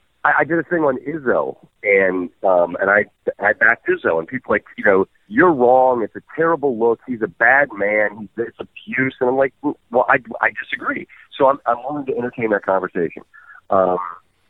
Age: 40-59